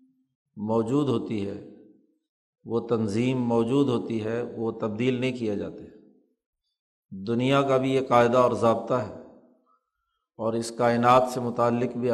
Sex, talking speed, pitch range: male, 135 wpm, 115-135 Hz